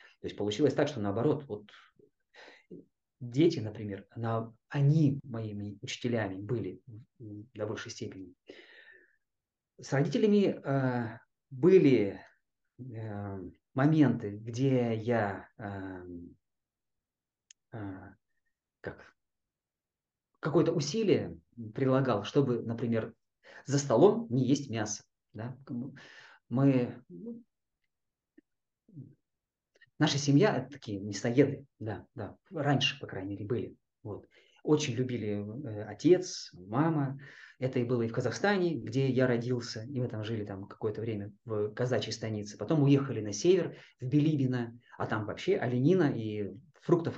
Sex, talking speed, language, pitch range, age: male, 110 wpm, Russian, 105-140 Hz, 30-49